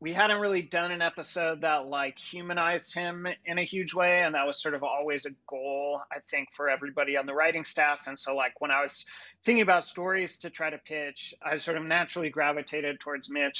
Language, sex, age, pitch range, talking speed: English, male, 30-49, 150-185 Hz, 220 wpm